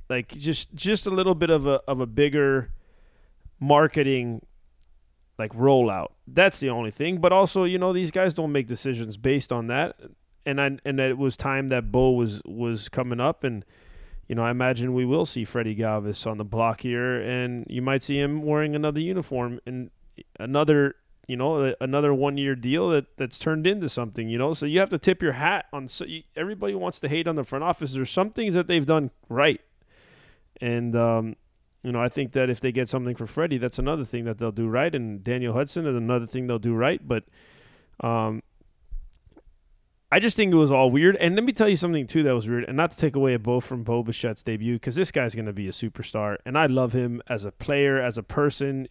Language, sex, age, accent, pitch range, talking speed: English, male, 20-39, American, 120-150 Hz, 220 wpm